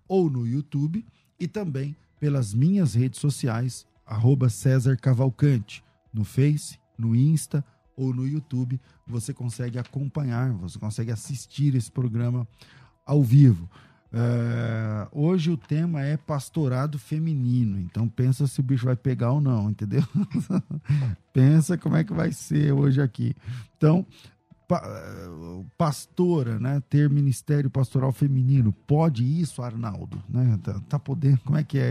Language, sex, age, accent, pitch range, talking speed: Portuguese, male, 40-59, Brazilian, 115-145 Hz, 135 wpm